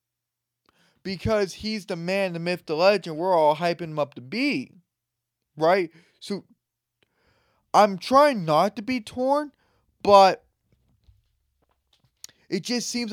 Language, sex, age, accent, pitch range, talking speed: English, male, 20-39, American, 150-205 Hz, 125 wpm